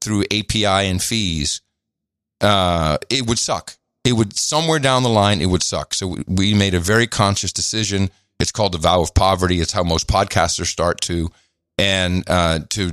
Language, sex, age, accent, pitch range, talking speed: English, male, 50-69, American, 90-110 Hz, 185 wpm